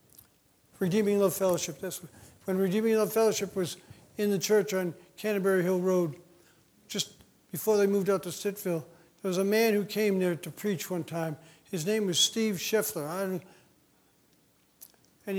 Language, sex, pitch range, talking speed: English, male, 175-210 Hz, 150 wpm